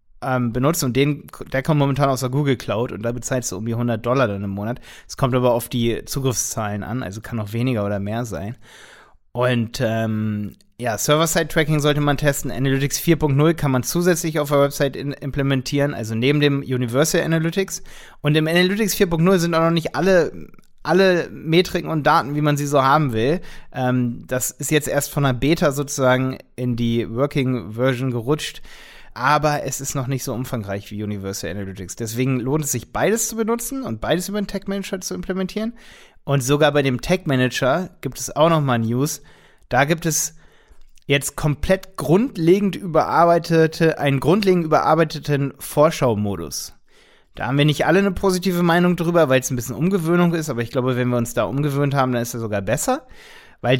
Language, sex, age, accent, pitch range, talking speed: German, male, 30-49, German, 125-165 Hz, 185 wpm